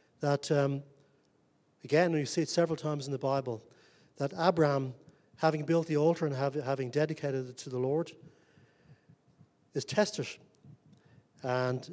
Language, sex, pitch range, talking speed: English, male, 135-160 Hz, 135 wpm